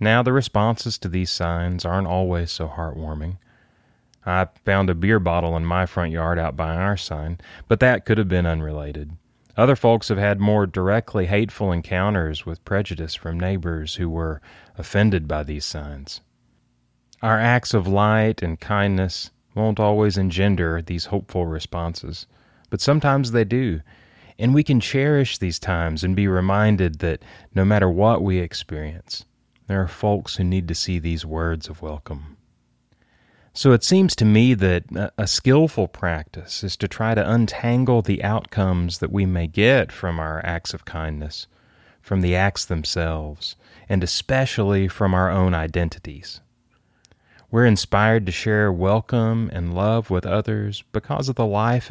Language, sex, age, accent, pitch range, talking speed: English, male, 30-49, American, 85-110 Hz, 160 wpm